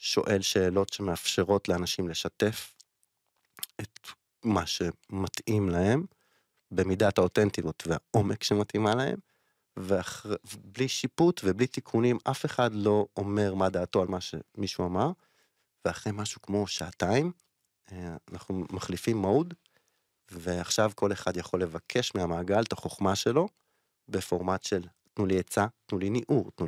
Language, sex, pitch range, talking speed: Hebrew, male, 95-120 Hz, 120 wpm